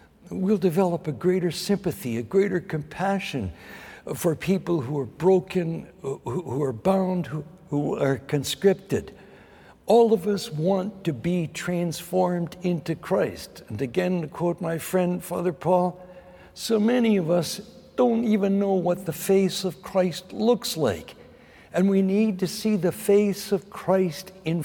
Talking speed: 150 wpm